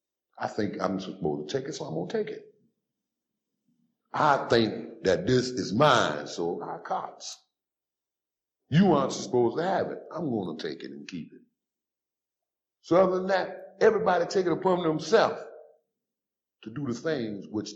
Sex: male